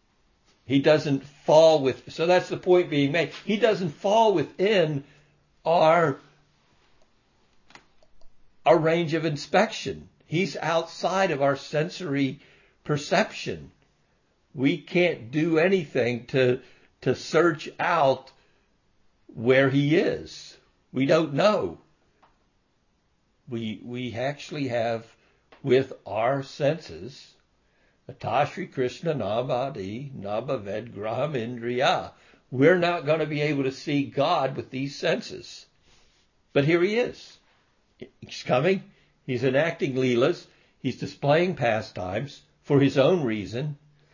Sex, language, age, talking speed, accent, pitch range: male, English, 60-79, 105 wpm, American, 130-160 Hz